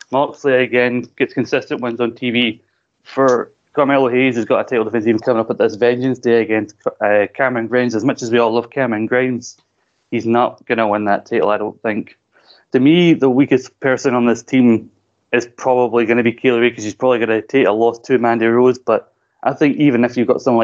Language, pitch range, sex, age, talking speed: English, 110-125 Hz, male, 20-39, 225 wpm